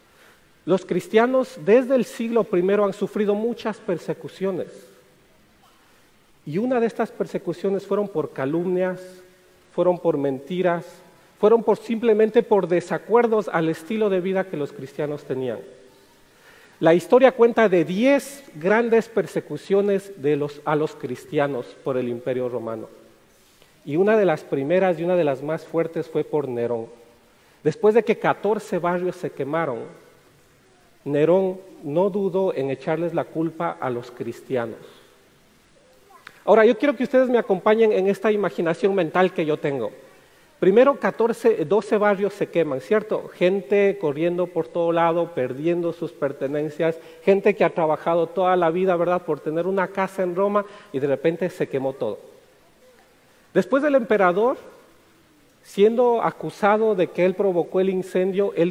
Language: Spanish